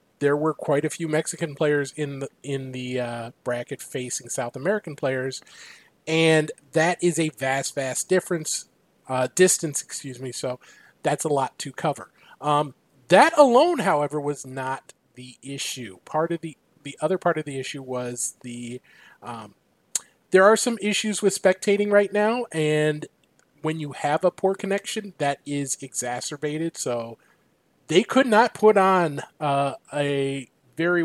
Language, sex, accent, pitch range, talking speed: English, male, American, 130-170 Hz, 155 wpm